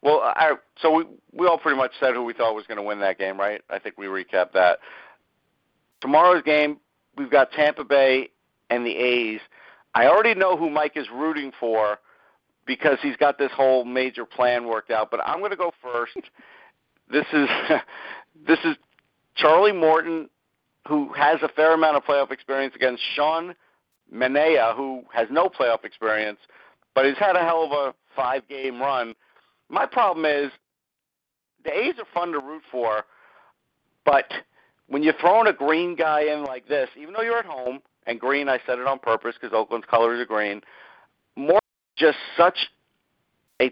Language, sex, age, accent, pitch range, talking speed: English, male, 50-69, American, 120-160 Hz, 175 wpm